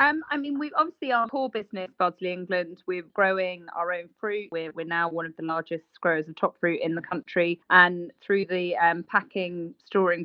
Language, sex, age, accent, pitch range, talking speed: English, female, 20-39, British, 175-200 Hz, 205 wpm